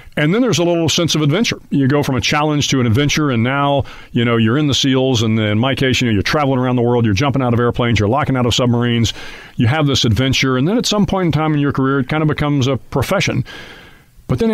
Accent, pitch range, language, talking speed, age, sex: American, 120-150 Hz, English, 275 wpm, 50-69, male